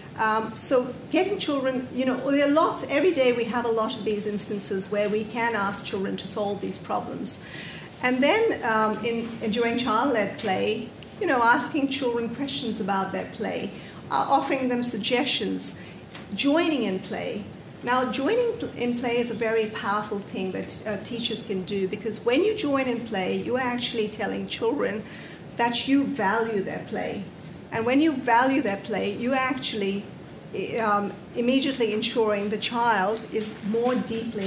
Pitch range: 205-255 Hz